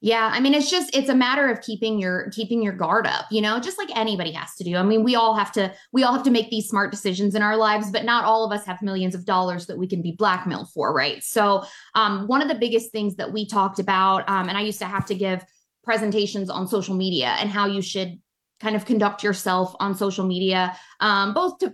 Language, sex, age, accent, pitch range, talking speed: English, female, 20-39, American, 185-225 Hz, 255 wpm